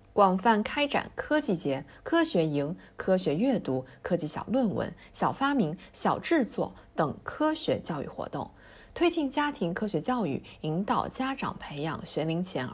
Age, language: 20-39, Chinese